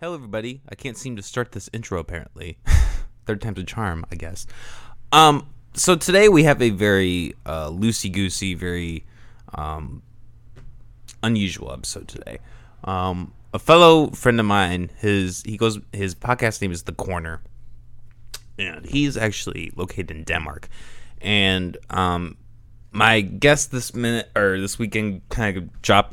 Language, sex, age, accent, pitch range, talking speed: English, male, 20-39, American, 95-120 Hz, 145 wpm